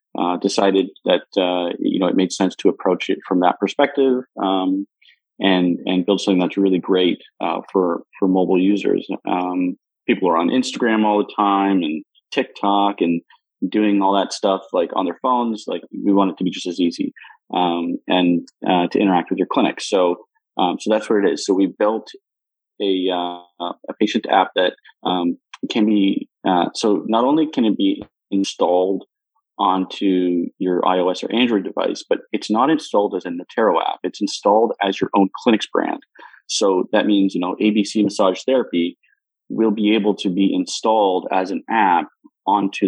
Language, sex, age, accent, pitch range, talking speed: English, male, 30-49, American, 90-105 Hz, 180 wpm